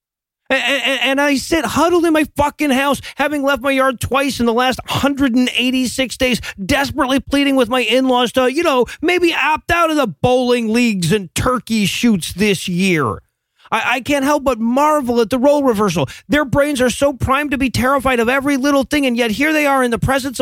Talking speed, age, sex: 195 wpm, 40-59, male